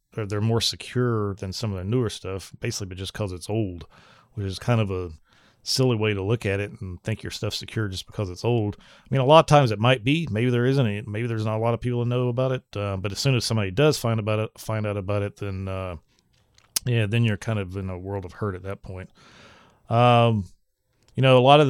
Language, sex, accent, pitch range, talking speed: English, male, American, 100-125 Hz, 255 wpm